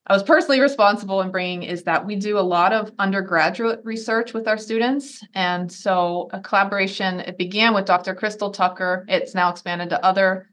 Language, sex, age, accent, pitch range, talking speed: English, female, 30-49, American, 170-205 Hz, 190 wpm